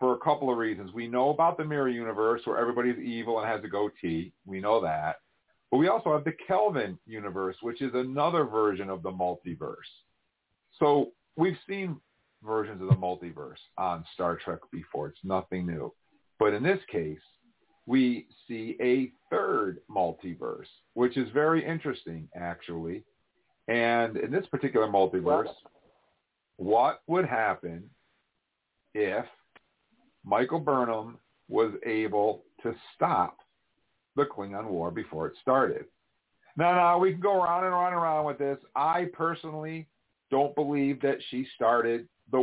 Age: 50-69